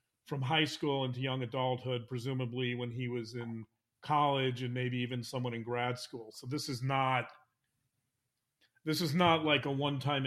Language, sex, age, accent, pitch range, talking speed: English, male, 40-59, American, 125-150 Hz, 170 wpm